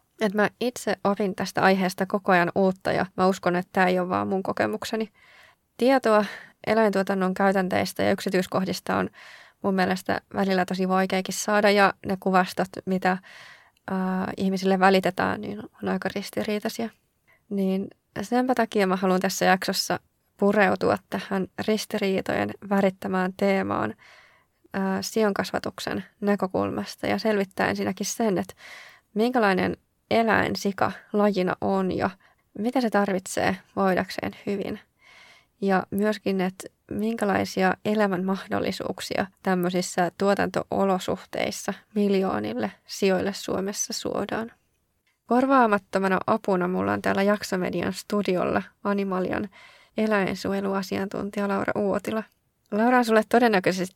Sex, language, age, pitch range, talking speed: female, Finnish, 20-39, 185-210 Hz, 110 wpm